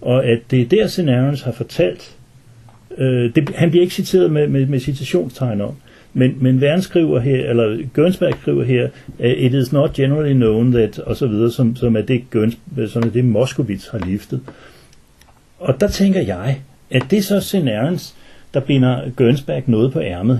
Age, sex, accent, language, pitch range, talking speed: 60-79, male, native, Danish, 115-145 Hz, 190 wpm